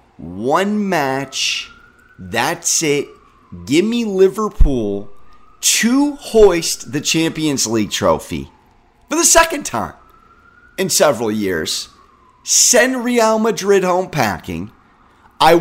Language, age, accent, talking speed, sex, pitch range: English, 30-49, American, 100 wpm, male, 130-195 Hz